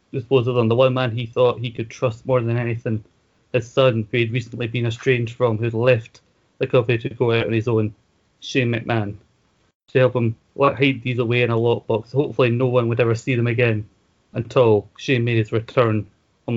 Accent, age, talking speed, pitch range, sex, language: British, 30-49, 205 wpm, 115-130 Hz, male, English